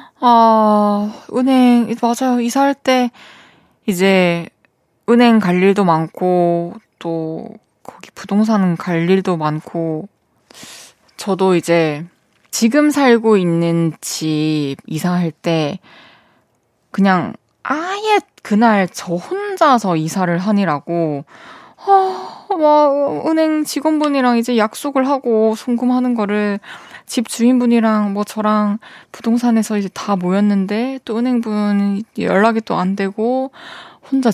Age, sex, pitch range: 20-39, female, 180-240 Hz